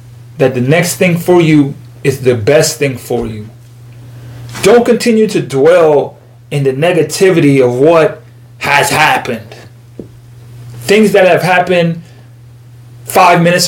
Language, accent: English, American